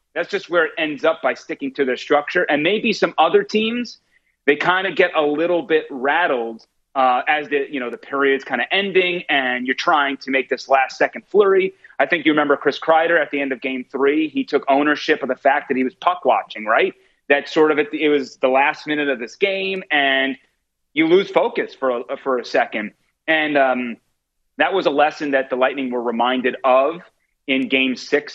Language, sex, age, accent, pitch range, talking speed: English, male, 30-49, American, 130-155 Hz, 215 wpm